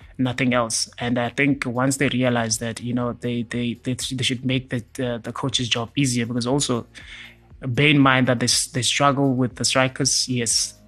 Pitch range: 120-140 Hz